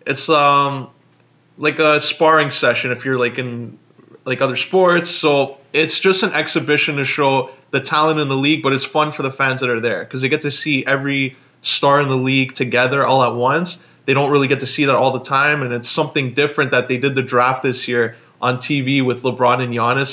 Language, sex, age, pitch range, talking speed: English, male, 20-39, 130-150 Hz, 225 wpm